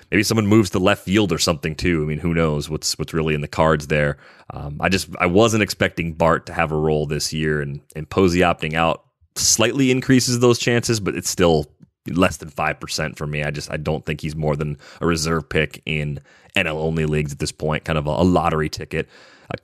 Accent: American